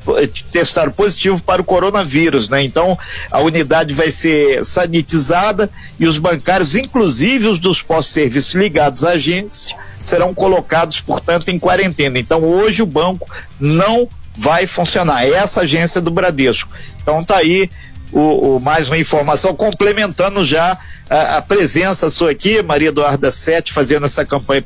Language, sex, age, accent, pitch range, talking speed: Portuguese, male, 50-69, Brazilian, 160-205 Hz, 145 wpm